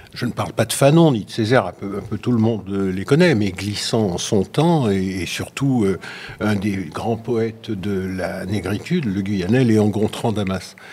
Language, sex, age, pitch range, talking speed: French, male, 60-79, 100-130 Hz, 215 wpm